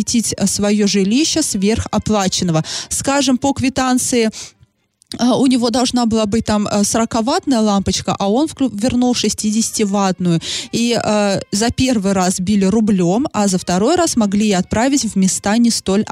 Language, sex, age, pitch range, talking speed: Russian, female, 20-39, 200-255 Hz, 140 wpm